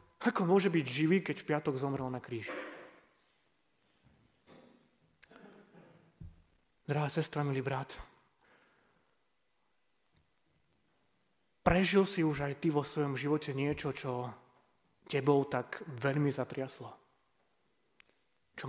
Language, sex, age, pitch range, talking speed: Slovak, male, 30-49, 135-175 Hz, 95 wpm